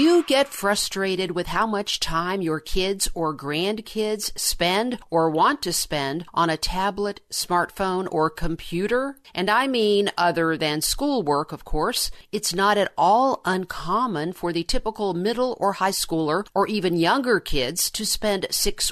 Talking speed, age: 155 wpm, 50-69